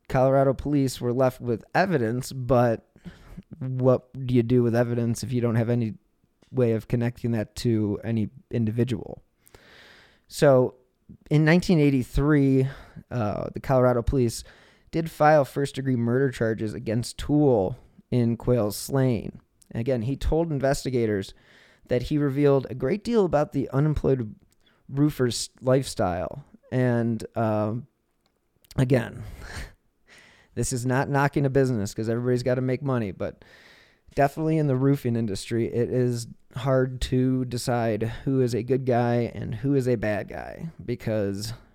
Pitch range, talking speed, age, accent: 115-140 Hz, 135 wpm, 20-39, American